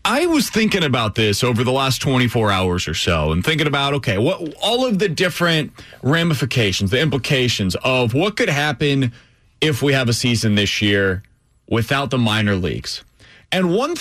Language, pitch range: English, 110-155 Hz